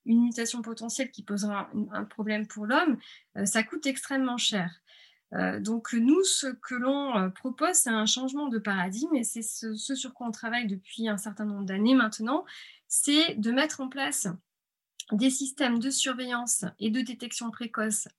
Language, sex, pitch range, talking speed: French, female, 210-265 Hz, 170 wpm